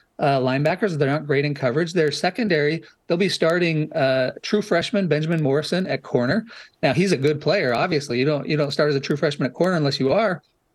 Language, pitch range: English, 135-175 Hz